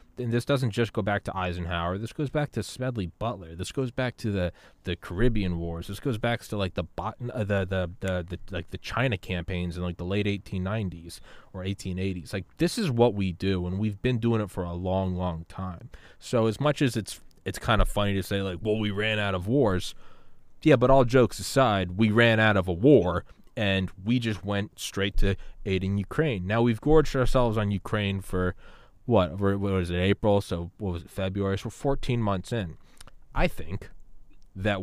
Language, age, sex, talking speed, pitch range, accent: English, 20-39, male, 215 wpm, 95-115 Hz, American